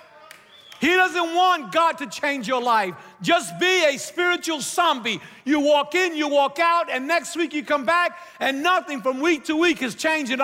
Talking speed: 190 wpm